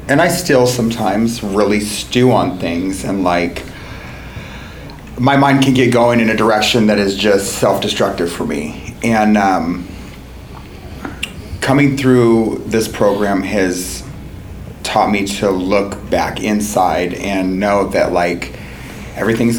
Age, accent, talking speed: 30-49, American, 130 wpm